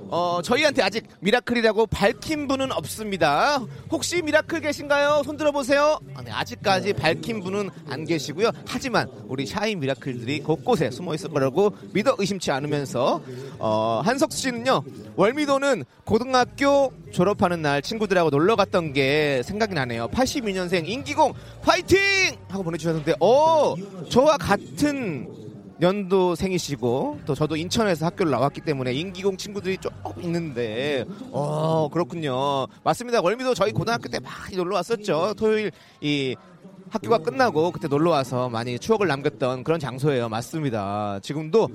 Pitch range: 150-240 Hz